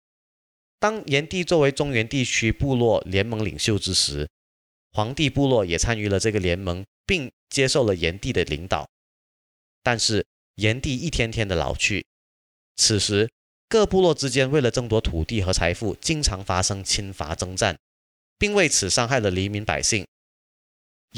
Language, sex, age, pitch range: Chinese, male, 30-49, 95-130 Hz